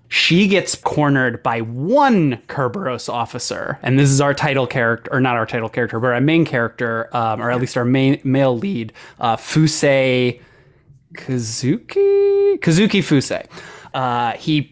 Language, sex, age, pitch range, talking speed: English, male, 20-39, 125-160 Hz, 150 wpm